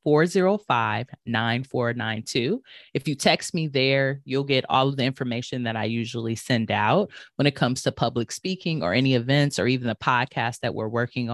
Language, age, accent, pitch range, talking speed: English, 20-39, American, 120-145 Hz, 175 wpm